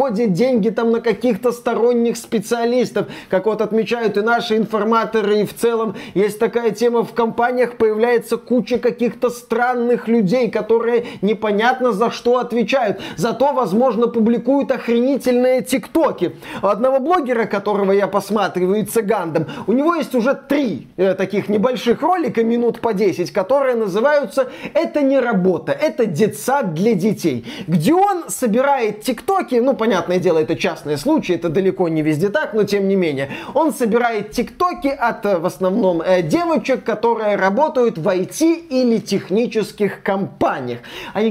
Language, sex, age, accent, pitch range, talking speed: Russian, male, 30-49, native, 195-245 Hz, 140 wpm